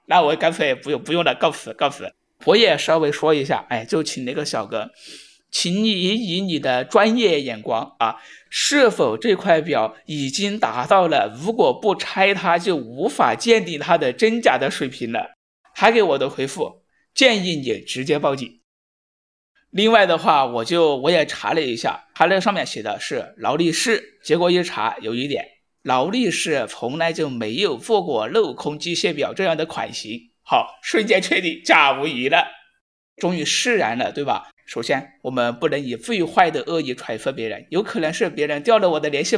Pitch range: 150-220 Hz